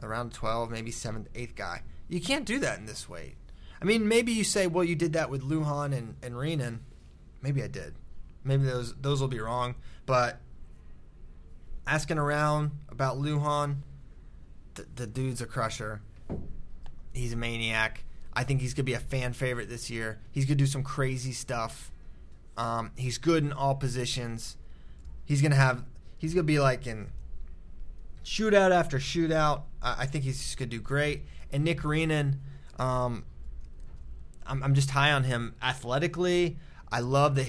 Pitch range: 115-145 Hz